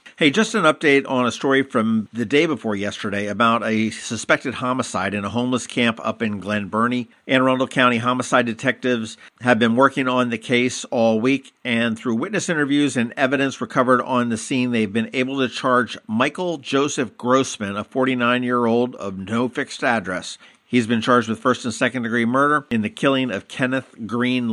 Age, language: 50-69, English